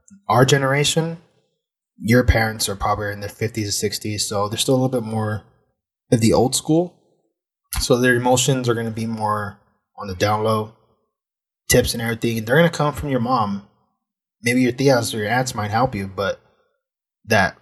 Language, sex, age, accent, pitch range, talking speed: English, male, 20-39, American, 105-135 Hz, 180 wpm